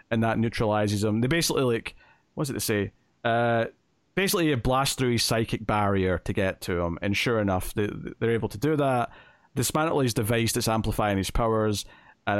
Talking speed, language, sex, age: 200 wpm, English, male, 30-49